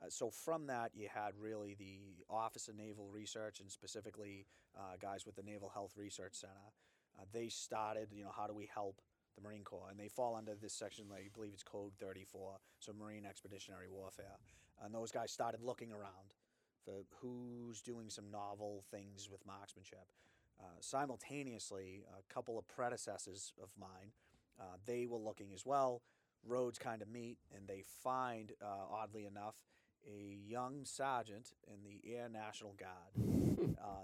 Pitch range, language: 95-110 Hz, English